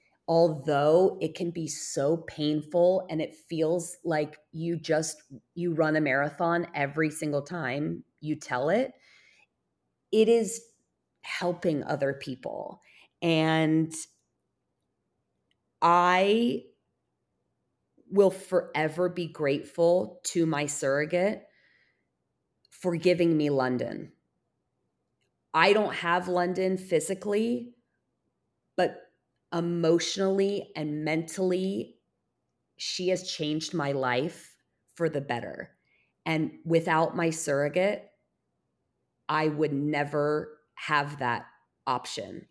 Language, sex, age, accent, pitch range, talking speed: English, female, 30-49, American, 145-175 Hz, 95 wpm